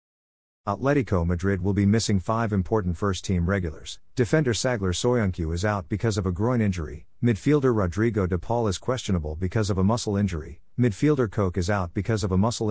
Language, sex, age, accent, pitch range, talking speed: English, male, 50-69, American, 90-115 Hz, 180 wpm